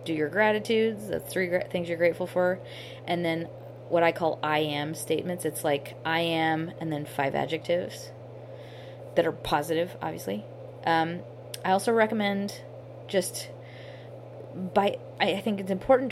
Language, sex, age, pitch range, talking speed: English, female, 20-39, 155-185 Hz, 145 wpm